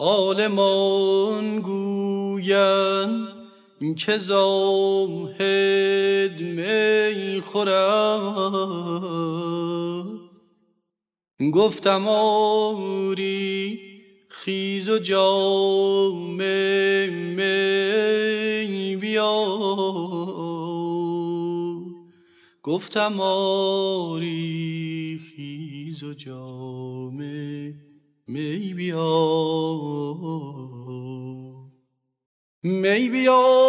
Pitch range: 175-255 Hz